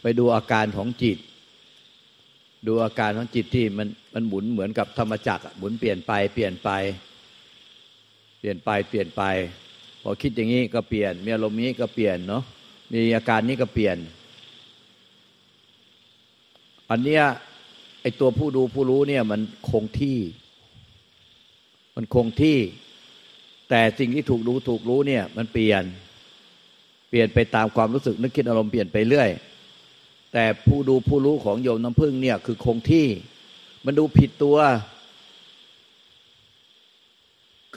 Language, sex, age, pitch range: Thai, male, 60-79, 110-130 Hz